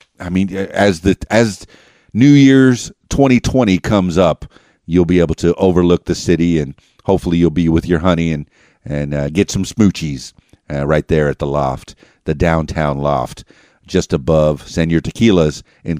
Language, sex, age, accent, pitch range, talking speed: English, male, 50-69, American, 80-100 Hz, 165 wpm